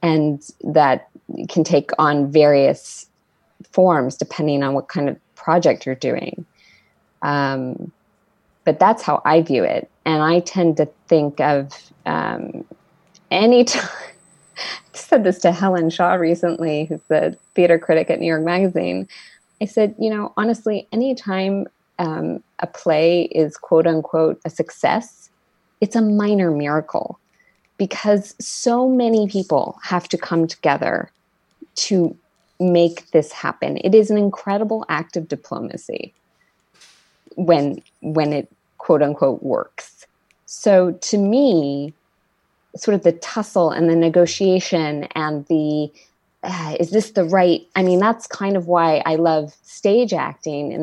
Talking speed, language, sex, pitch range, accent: 140 wpm, English, female, 155-200 Hz, American